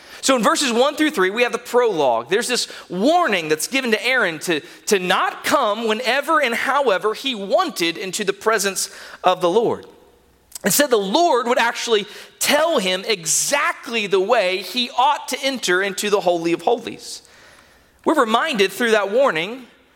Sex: male